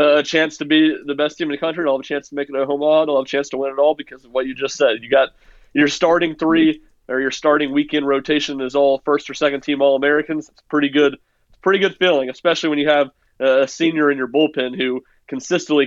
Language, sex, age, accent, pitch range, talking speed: English, male, 30-49, American, 125-150 Hz, 265 wpm